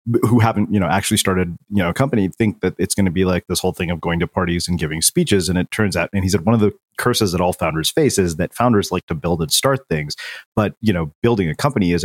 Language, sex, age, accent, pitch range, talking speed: English, male, 30-49, American, 85-110 Hz, 290 wpm